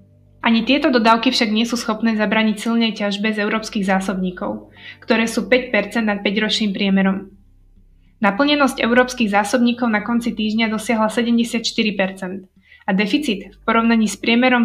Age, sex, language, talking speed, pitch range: 20-39, female, Slovak, 140 wpm, 205-235 Hz